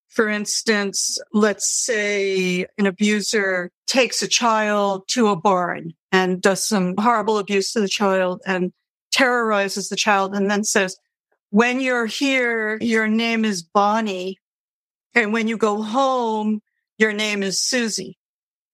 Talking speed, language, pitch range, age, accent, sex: 140 wpm, English, 195-225 Hz, 50-69, American, female